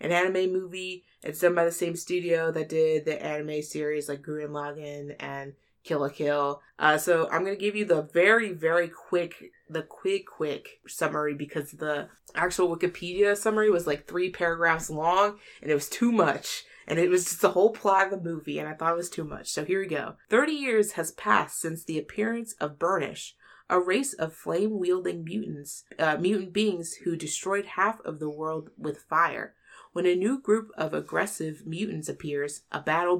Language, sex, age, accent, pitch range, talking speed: English, female, 20-39, American, 150-195 Hz, 195 wpm